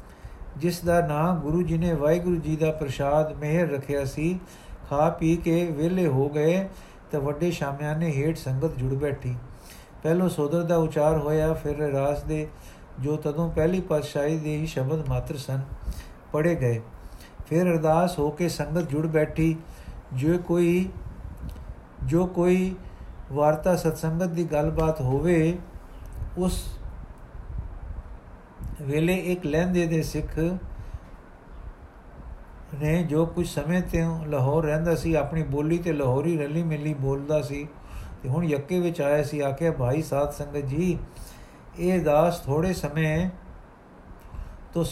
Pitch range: 140-170 Hz